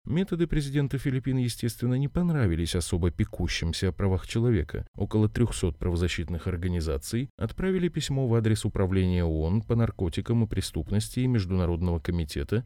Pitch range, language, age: 85-120 Hz, Russian, 20-39